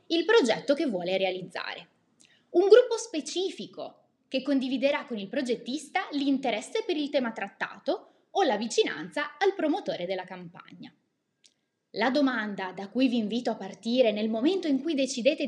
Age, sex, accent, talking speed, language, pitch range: 20-39, female, native, 145 wpm, Italian, 205-320 Hz